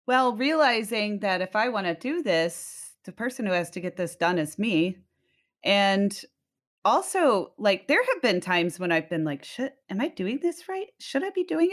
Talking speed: 205 wpm